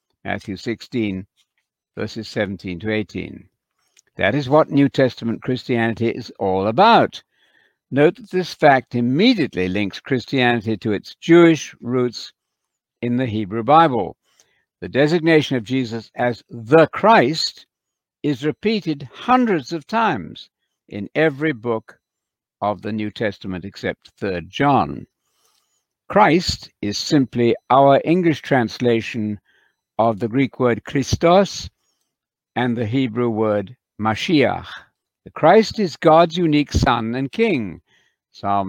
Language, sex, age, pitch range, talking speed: English, male, 60-79, 110-150 Hz, 120 wpm